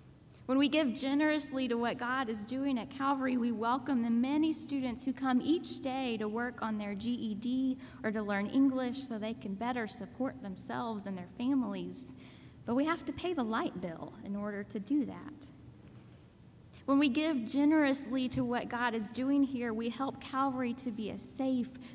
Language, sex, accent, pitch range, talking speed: English, female, American, 230-275 Hz, 185 wpm